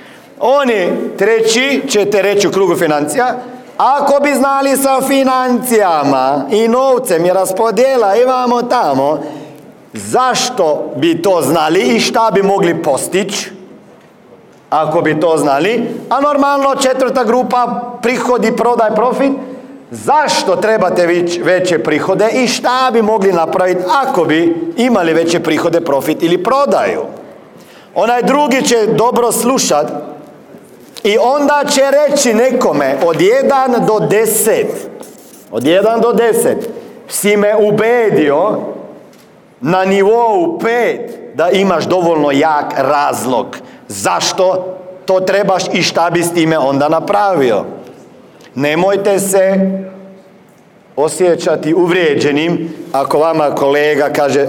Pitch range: 170-250 Hz